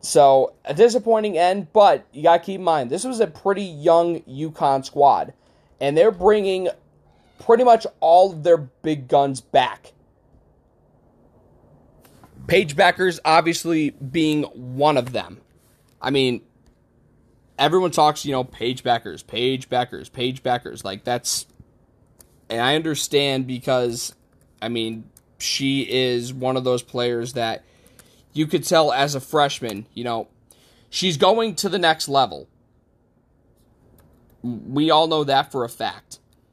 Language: English